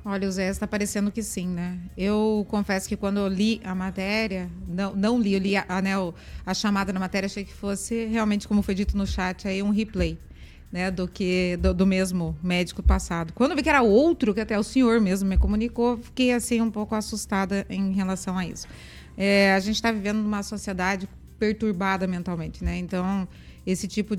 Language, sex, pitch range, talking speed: Portuguese, female, 185-215 Hz, 205 wpm